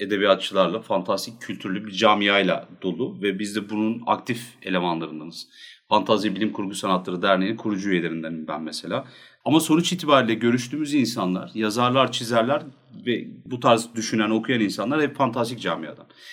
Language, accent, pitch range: Turkish, native, 105-140 Hz